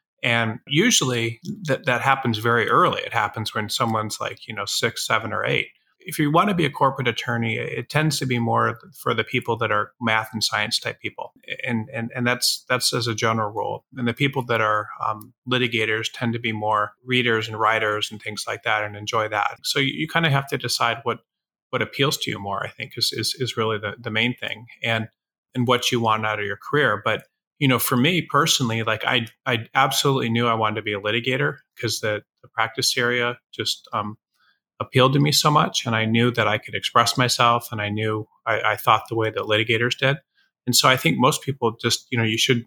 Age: 30-49